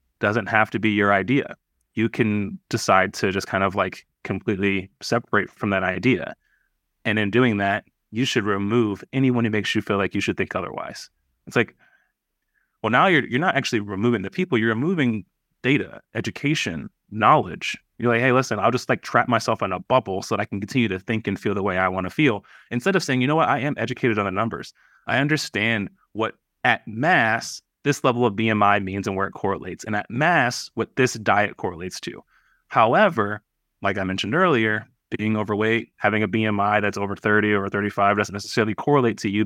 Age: 30-49